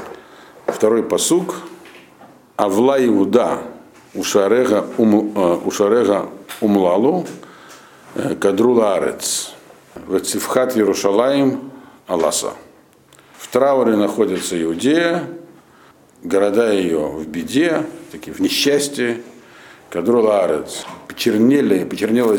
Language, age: Russian, 60-79